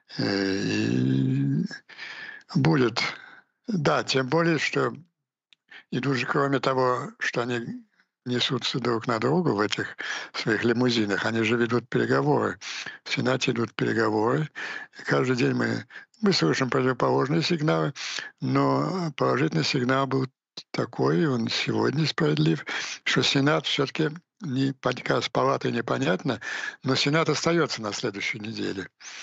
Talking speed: 115 wpm